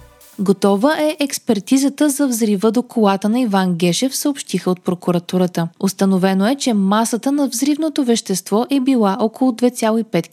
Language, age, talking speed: Bulgarian, 20-39, 140 wpm